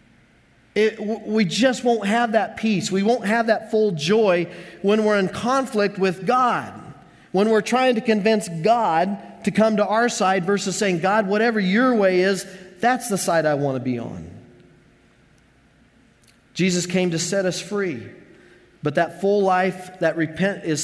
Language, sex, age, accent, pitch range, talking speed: English, male, 40-59, American, 145-205 Hz, 165 wpm